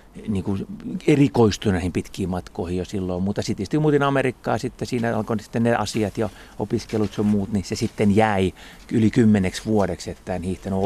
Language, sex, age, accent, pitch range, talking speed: Finnish, male, 30-49, native, 90-110 Hz, 170 wpm